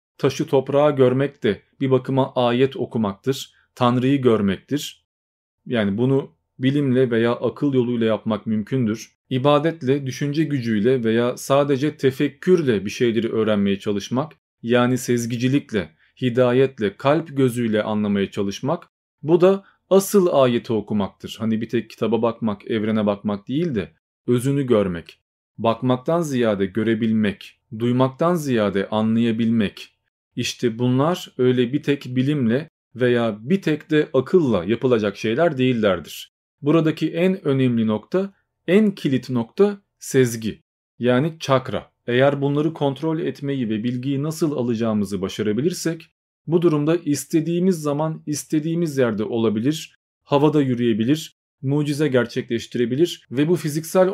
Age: 40-59